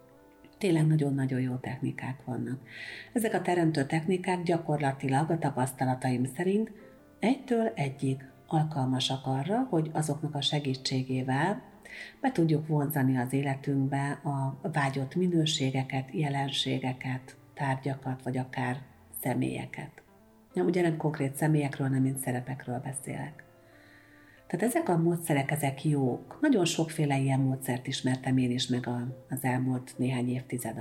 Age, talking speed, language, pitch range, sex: 50-69, 115 wpm, Hungarian, 130-155 Hz, female